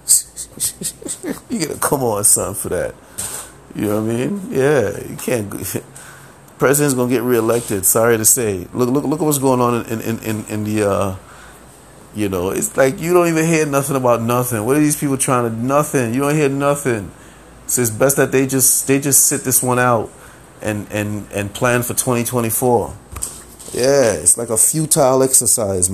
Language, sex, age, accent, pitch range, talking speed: English, male, 30-49, American, 100-130 Hz, 195 wpm